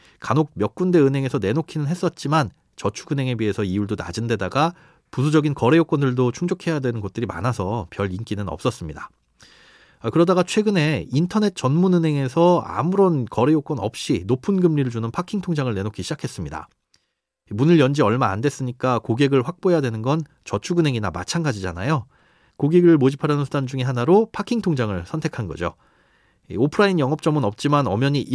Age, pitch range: 30-49, 115-165 Hz